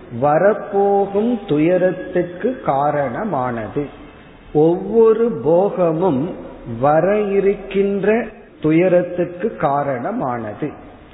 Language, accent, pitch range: Tamil, native, 150-185 Hz